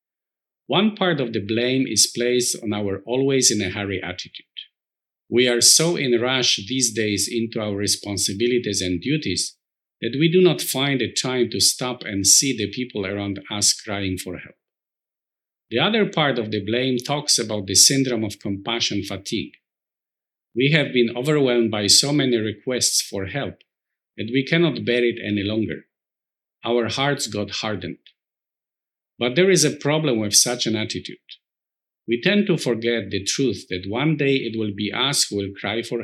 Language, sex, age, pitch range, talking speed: English, male, 50-69, 105-135 Hz, 170 wpm